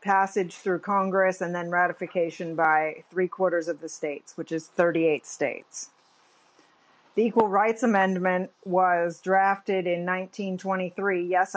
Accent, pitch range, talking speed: American, 170-195 Hz, 125 wpm